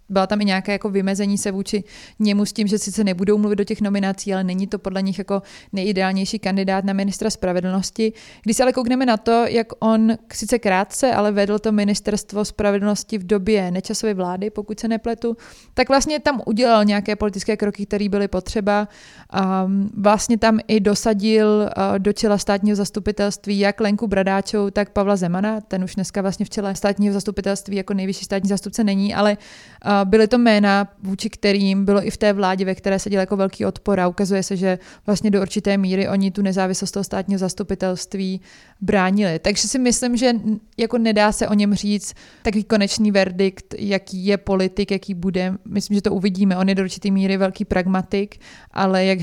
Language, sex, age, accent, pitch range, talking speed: Czech, female, 20-39, native, 195-210 Hz, 185 wpm